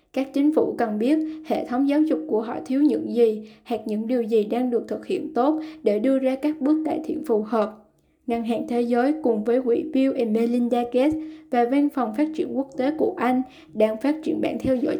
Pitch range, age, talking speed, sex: 230-295 Hz, 10-29, 230 wpm, female